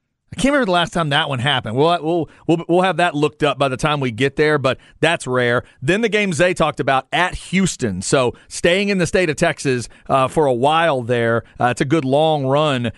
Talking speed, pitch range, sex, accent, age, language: 240 wpm, 135-170 Hz, male, American, 40-59, English